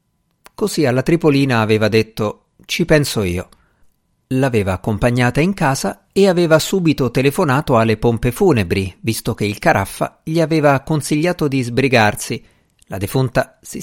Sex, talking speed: male, 135 wpm